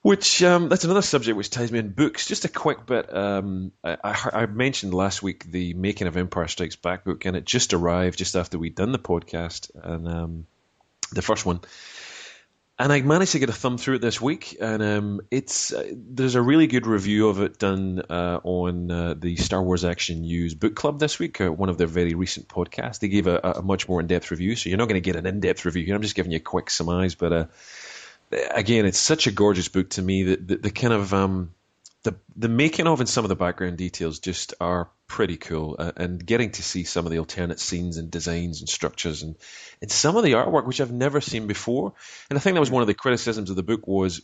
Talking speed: 240 wpm